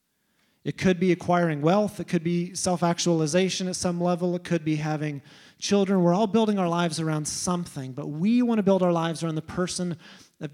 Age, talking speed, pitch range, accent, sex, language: 30-49, 200 wpm, 150-180 Hz, American, male, English